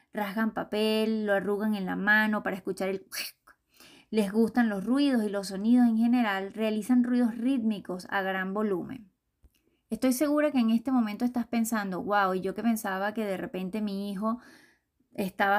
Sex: female